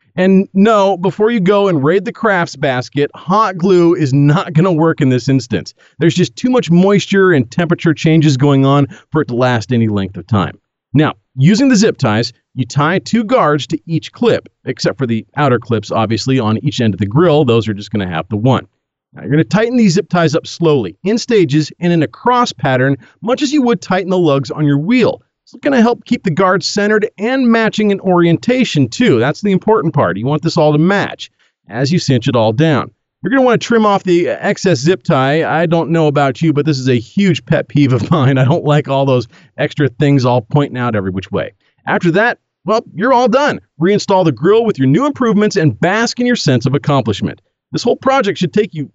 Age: 40-59